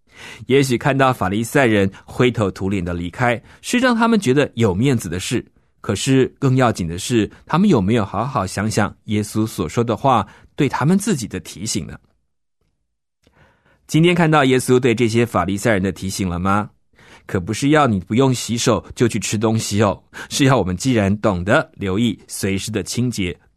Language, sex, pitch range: Chinese, male, 100-135 Hz